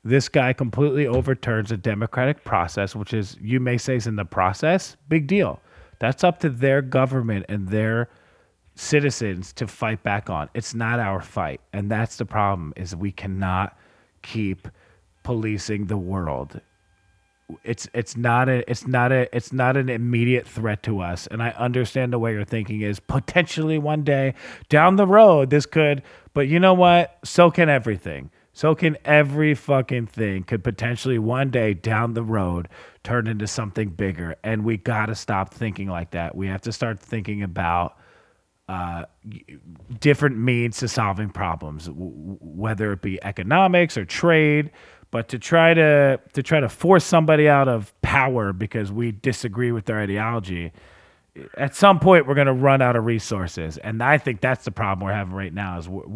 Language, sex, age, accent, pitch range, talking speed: English, male, 30-49, American, 100-130 Hz, 180 wpm